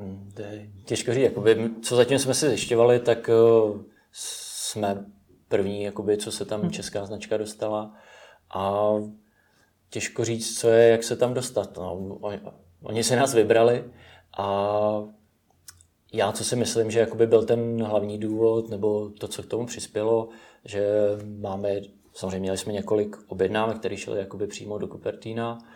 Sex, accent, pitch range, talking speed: male, native, 100-110 Hz, 140 wpm